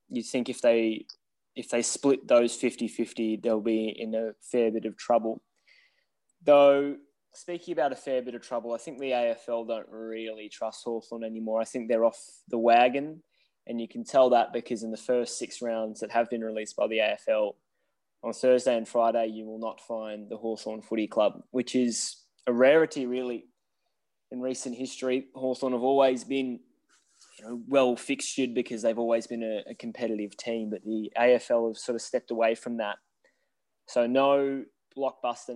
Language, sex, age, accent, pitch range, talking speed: English, male, 10-29, Australian, 110-130 Hz, 175 wpm